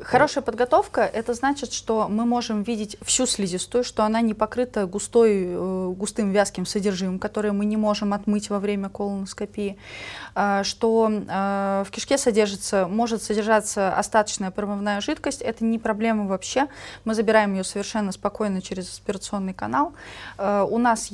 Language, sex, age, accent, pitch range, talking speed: Russian, female, 20-39, native, 190-225 Hz, 140 wpm